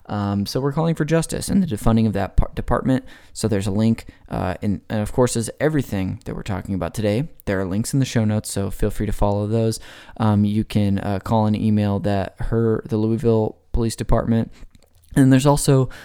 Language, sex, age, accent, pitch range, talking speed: English, male, 20-39, American, 95-115 Hz, 215 wpm